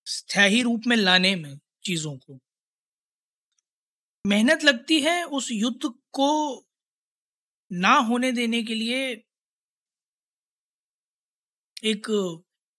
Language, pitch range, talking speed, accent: Hindi, 185-260 Hz, 90 wpm, native